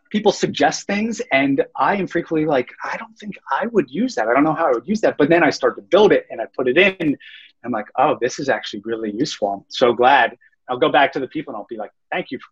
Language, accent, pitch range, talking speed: English, American, 120-165 Hz, 290 wpm